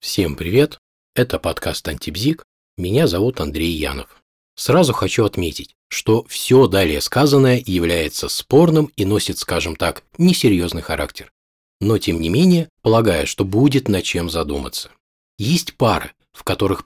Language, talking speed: Russian, 135 wpm